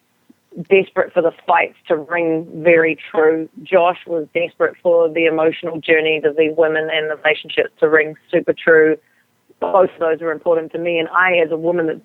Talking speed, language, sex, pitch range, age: 190 wpm, English, female, 165-220 Hz, 30-49